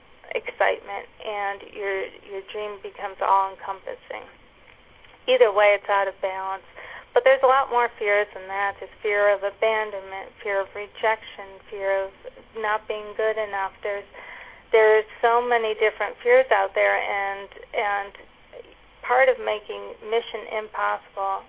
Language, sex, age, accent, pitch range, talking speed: English, female, 40-59, American, 200-260 Hz, 140 wpm